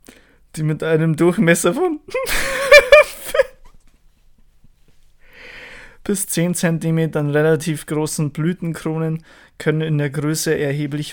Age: 20-39